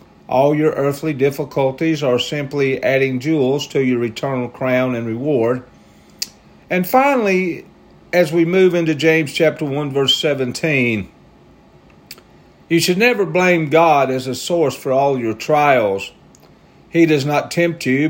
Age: 50-69